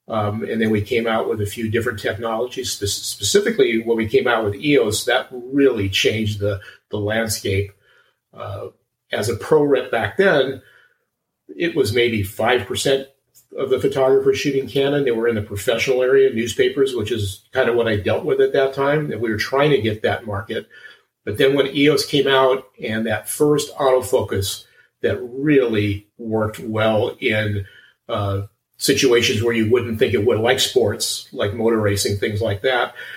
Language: English